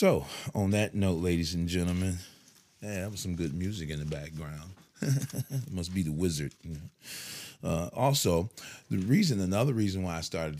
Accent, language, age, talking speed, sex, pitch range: American, English, 30-49, 165 wpm, male, 80-100 Hz